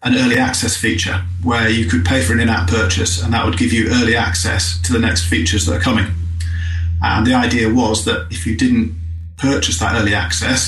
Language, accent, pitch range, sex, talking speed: English, British, 85-115 Hz, male, 215 wpm